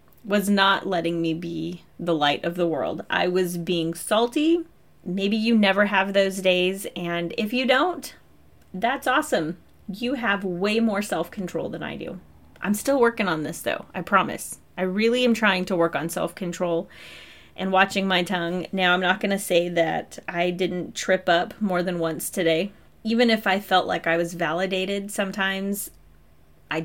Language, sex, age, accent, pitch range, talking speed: English, female, 30-49, American, 165-200 Hz, 175 wpm